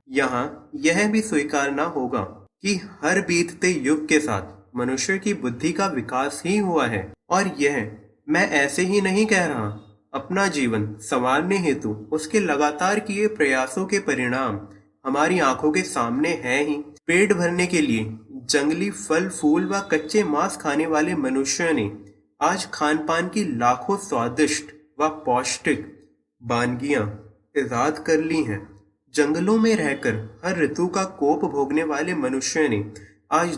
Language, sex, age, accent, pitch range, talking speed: English, male, 30-49, Indian, 125-185 Hz, 135 wpm